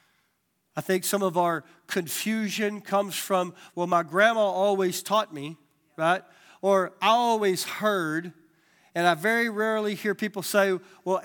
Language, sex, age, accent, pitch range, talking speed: English, male, 50-69, American, 170-210 Hz, 145 wpm